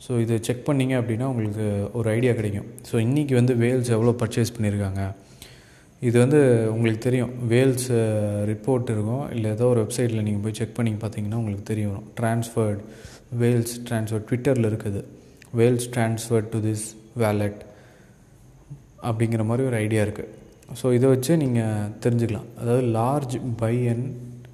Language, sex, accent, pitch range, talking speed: Tamil, male, native, 110-130 Hz, 140 wpm